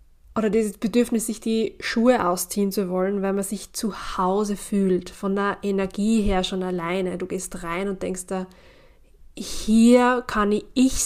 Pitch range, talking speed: 190-225 Hz, 165 wpm